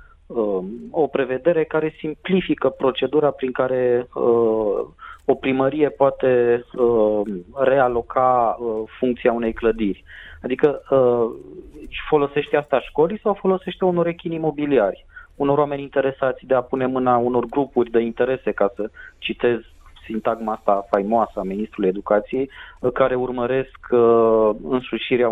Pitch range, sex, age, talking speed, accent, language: 120-145 Hz, male, 30-49, 125 wpm, native, Romanian